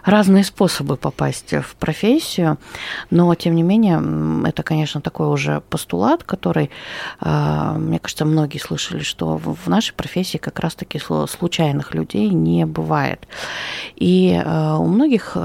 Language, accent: Russian, native